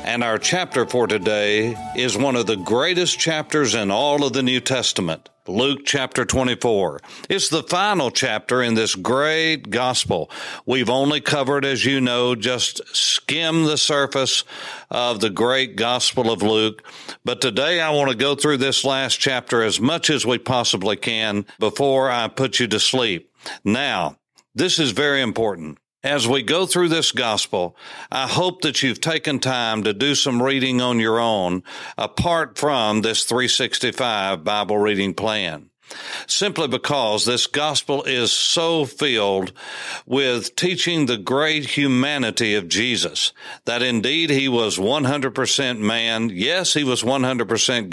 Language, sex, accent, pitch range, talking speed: English, male, American, 115-140 Hz, 150 wpm